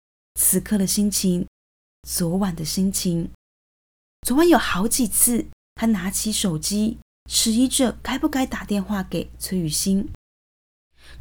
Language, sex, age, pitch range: Chinese, female, 20-39, 180-235 Hz